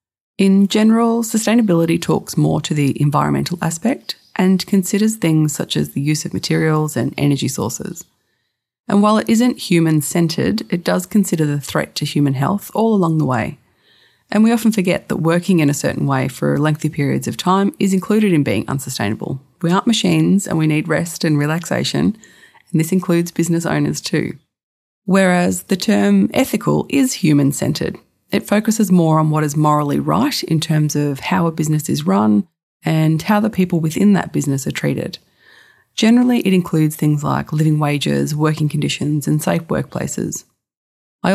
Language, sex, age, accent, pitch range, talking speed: English, female, 30-49, Australian, 150-200 Hz, 170 wpm